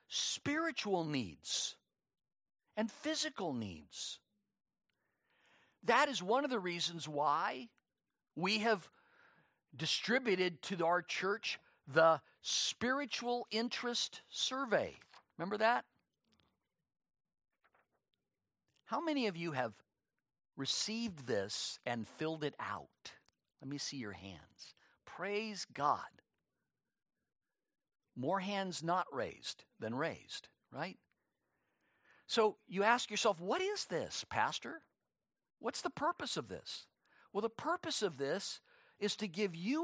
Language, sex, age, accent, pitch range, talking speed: English, male, 50-69, American, 170-245 Hz, 105 wpm